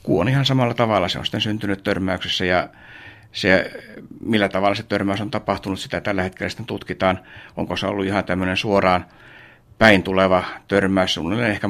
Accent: native